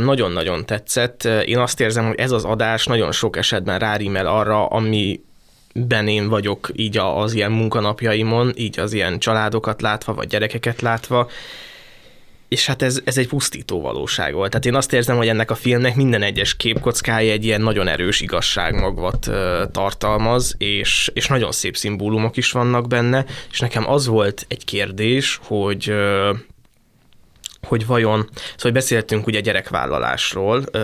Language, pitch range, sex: Hungarian, 105-120 Hz, male